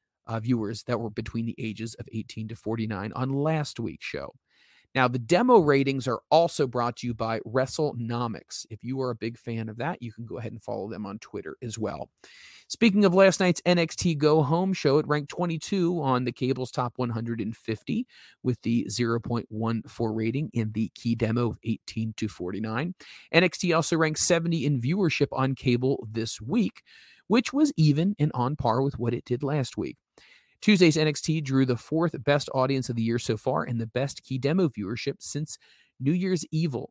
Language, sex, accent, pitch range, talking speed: English, male, American, 115-155 Hz, 190 wpm